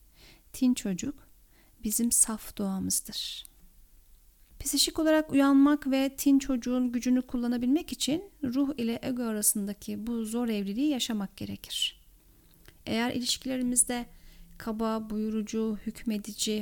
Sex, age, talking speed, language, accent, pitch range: female, 40-59, 100 wpm, Turkish, native, 200-245 Hz